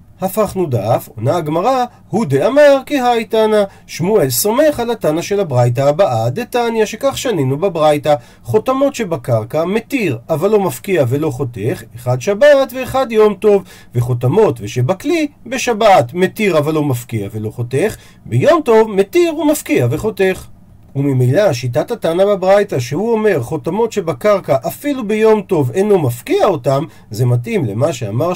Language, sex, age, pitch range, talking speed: Hebrew, male, 40-59, 145-215 Hz, 135 wpm